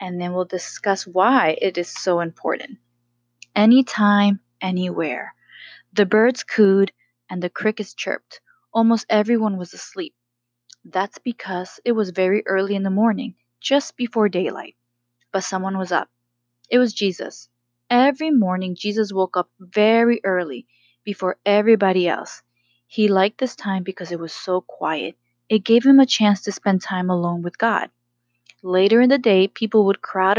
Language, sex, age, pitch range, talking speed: English, female, 20-39, 175-230 Hz, 155 wpm